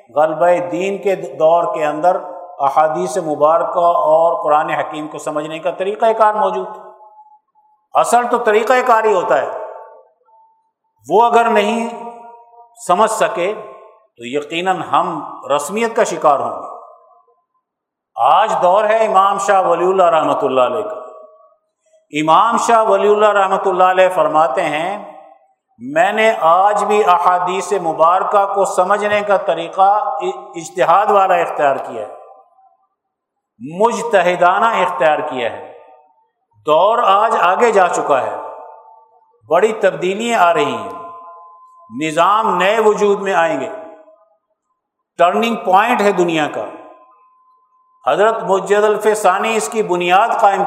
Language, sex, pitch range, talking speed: Urdu, male, 175-230 Hz, 125 wpm